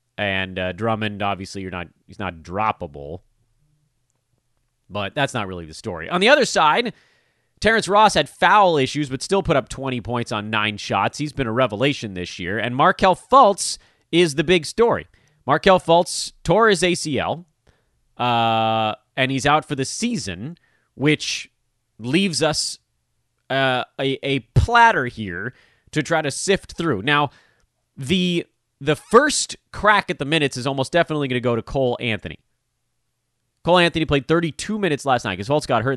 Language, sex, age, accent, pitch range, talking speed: English, male, 30-49, American, 115-155 Hz, 165 wpm